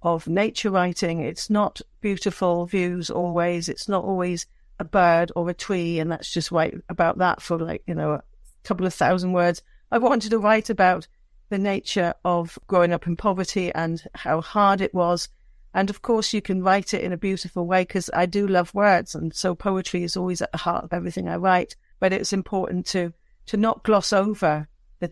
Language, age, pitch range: English, 50-69, 170-195 Hz